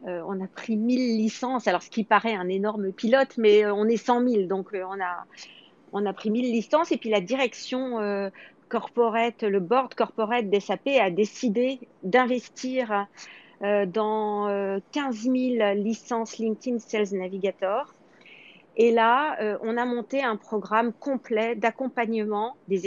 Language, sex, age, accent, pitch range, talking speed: French, female, 40-59, French, 200-245 Hz, 155 wpm